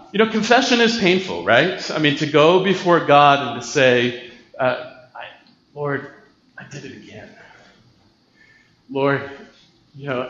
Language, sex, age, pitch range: English, male, 40-59, 140-190 Hz